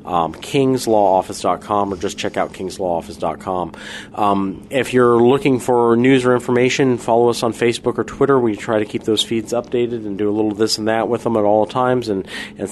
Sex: male